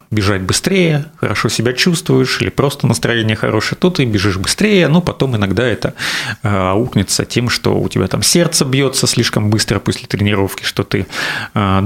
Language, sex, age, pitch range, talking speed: Russian, male, 30-49, 105-135 Hz, 165 wpm